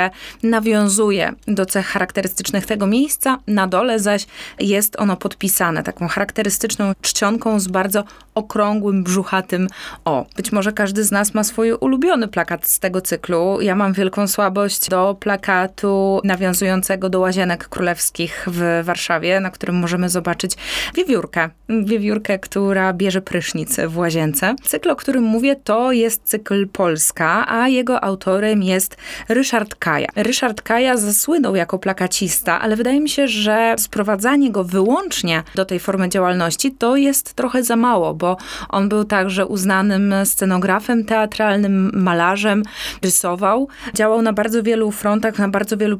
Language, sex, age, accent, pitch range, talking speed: Polish, female, 20-39, native, 190-225 Hz, 140 wpm